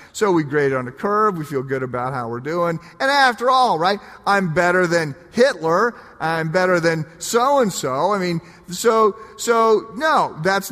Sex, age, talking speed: male, 40-59, 190 wpm